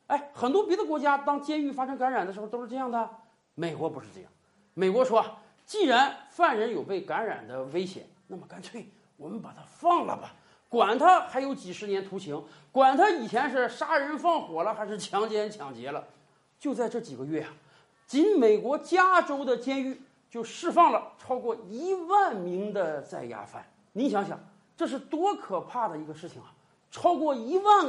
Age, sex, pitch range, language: 40-59, male, 220-335 Hz, Chinese